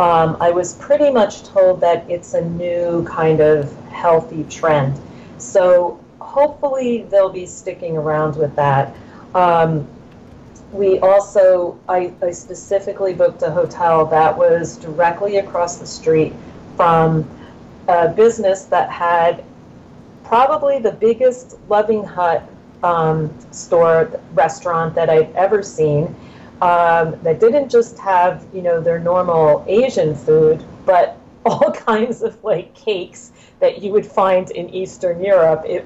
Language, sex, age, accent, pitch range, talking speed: English, female, 40-59, American, 165-220 Hz, 130 wpm